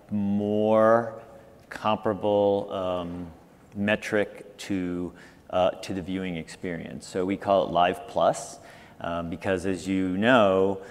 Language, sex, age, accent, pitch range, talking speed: English, male, 40-59, American, 90-100 Hz, 115 wpm